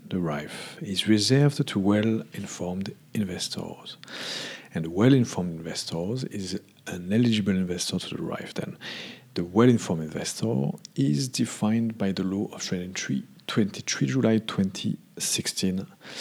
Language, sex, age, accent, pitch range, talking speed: English, male, 50-69, French, 90-115 Hz, 135 wpm